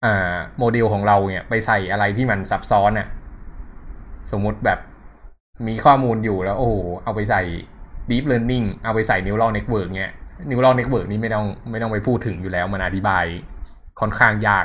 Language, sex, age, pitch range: Thai, male, 20-39, 90-115 Hz